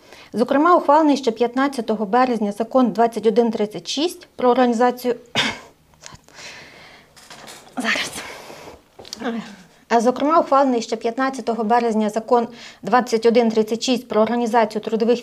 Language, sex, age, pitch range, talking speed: Ukrainian, female, 30-49, 210-255 Hz, 65 wpm